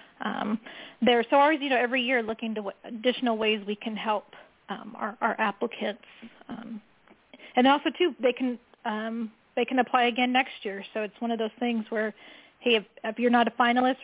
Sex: female